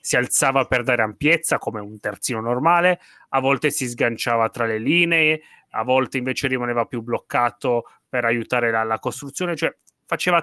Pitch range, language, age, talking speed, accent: 125-155 Hz, Italian, 30-49, 165 wpm, native